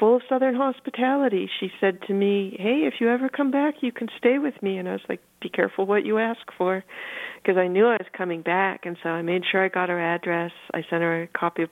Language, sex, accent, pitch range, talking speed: English, female, American, 165-200 Hz, 260 wpm